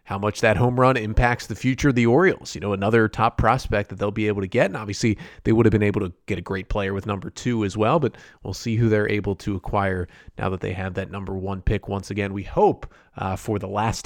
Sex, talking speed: male, 270 wpm